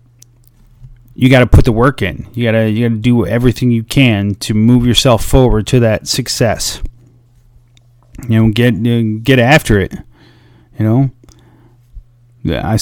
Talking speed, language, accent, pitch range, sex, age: 155 wpm, English, American, 110-125 Hz, male, 30-49